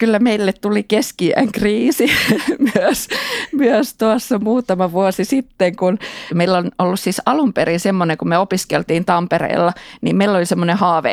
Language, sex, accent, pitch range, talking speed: Finnish, female, native, 170-220 Hz, 150 wpm